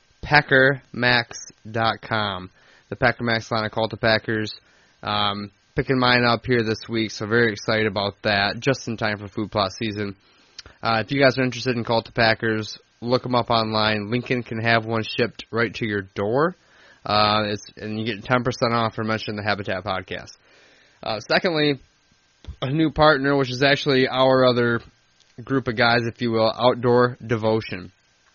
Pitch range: 105-125 Hz